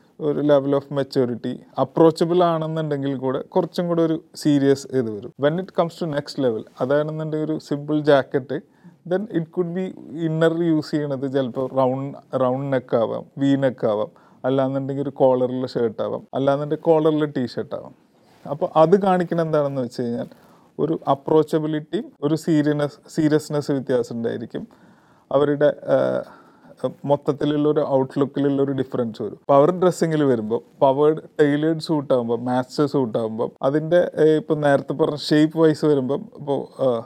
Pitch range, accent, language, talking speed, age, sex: 130-155 Hz, native, Malayalam, 130 wpm, 30-49, male